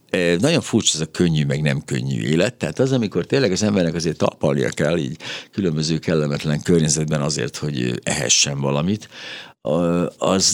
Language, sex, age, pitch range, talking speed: Hungarian, male, 60-79, 75-95 Hz, 155 wpm